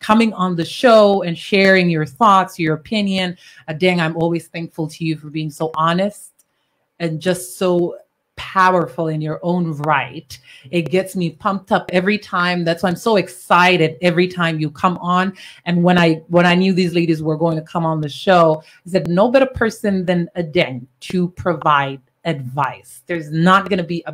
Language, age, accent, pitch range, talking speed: English, 30-49, American, 165-200 Hz, 190 wpm